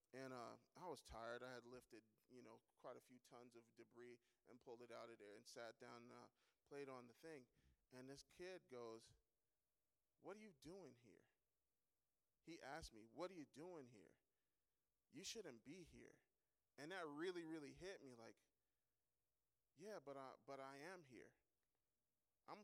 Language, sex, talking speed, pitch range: English, male, 180 wpm, 120-145 Hz